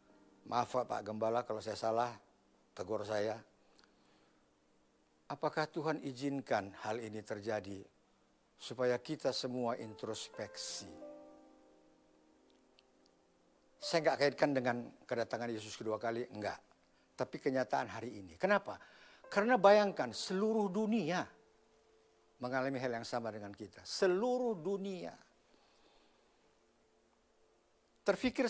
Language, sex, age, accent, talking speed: Indonesian, male, 50-69, native, 95 wpm